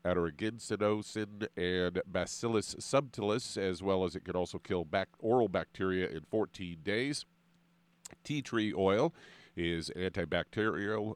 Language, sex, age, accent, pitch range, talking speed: English, male, 50-69, American, 85-110 Hz, 120 wpm